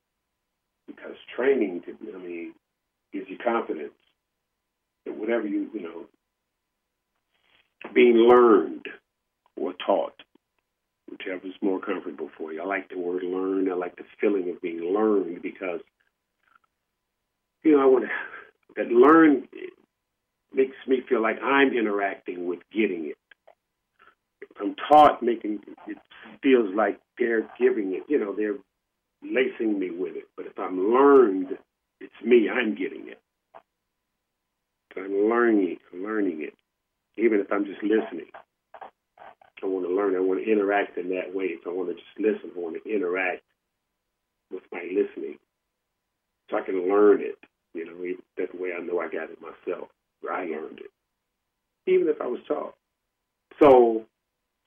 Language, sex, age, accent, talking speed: English, male, 50-69, American, 150 wpm